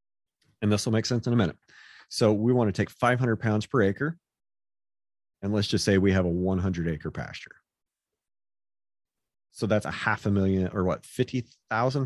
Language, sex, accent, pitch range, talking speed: English, male, American, 95-125 Hz, 180 wpm